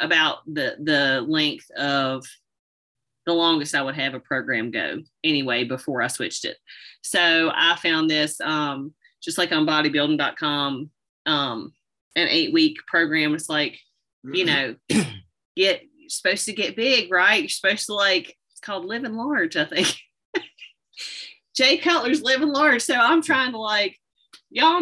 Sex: female